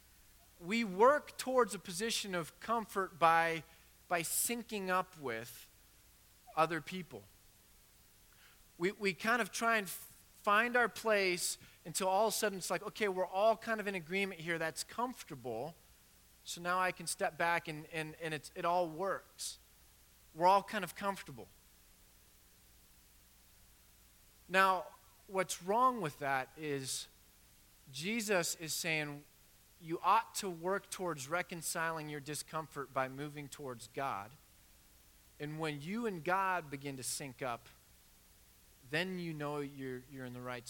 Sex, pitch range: male, 135-190 Hz